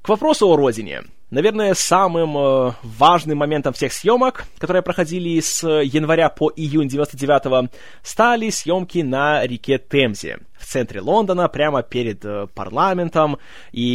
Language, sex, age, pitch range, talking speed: Russian, male, 20-39, 130-180 Hz, 130 wpm